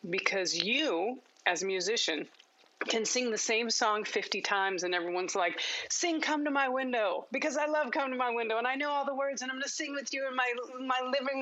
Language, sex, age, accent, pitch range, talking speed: English, female, 30-49, American, 200-265 Hz, 230 wpm